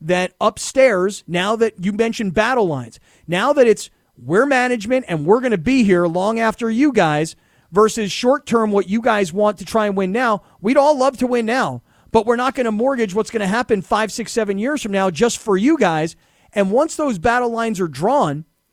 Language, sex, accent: English, male, American